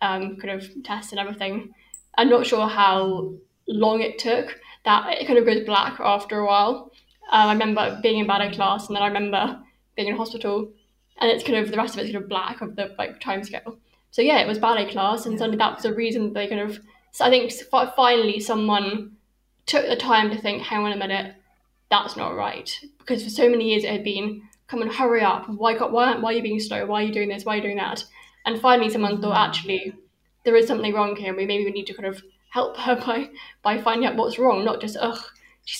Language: English